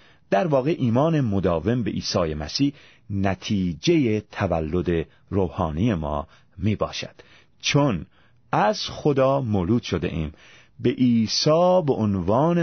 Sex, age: male, 40-59